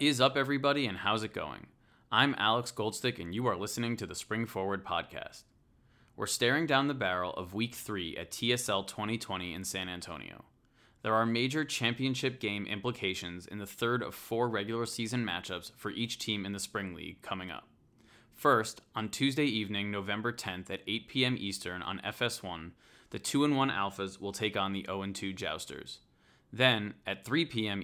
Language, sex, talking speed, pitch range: English, male, 180 wpm, 95-120 Hz